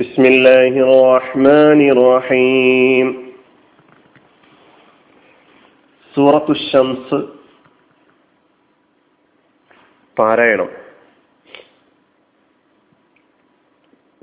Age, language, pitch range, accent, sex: 40-59, Malayalam, 125-150 Hz, native, male